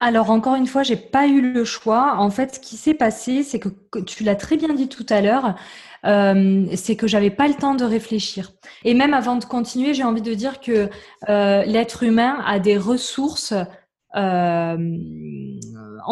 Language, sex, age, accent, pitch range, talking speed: French, female, 20-39, French, 195-245 Hz, 190 wpm